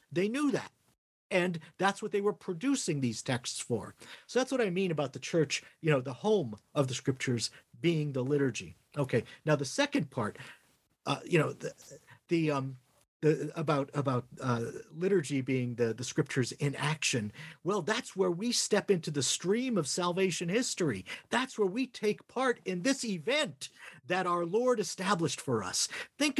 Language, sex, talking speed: English, male, 175 wpm